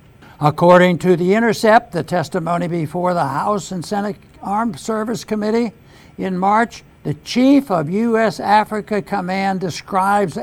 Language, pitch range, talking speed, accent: English, 165-215 Hz, 130 wpm, American